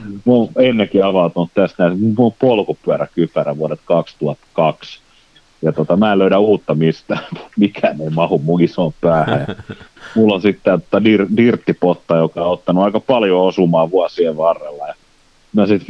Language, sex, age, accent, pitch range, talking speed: Finnish, male, 30-49, native, 80-100 Hz, 155 wpm